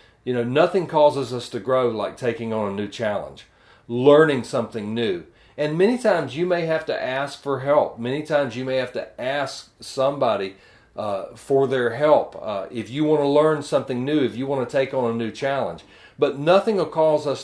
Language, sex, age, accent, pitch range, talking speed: English, male, 40-59, American, 120-155 Hz, 205 wpm